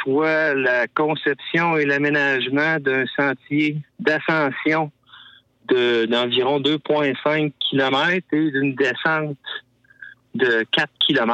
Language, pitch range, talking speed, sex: French, 130-160 Hz, 95 wpm, male